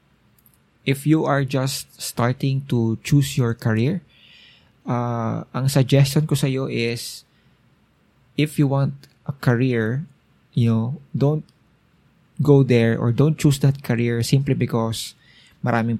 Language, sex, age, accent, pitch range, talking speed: Filipino, male, 20-39, native, 115-145 Hz, 125 wpm